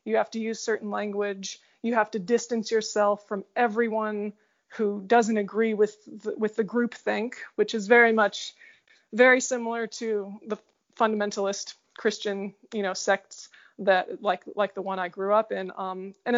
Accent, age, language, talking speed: American, 20-39, English, 165 wpm